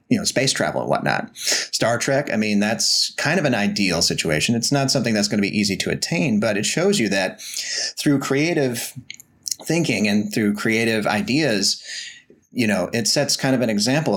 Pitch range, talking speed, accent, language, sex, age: 100-120 Hz, 190 wpm, American, English, male, 30-49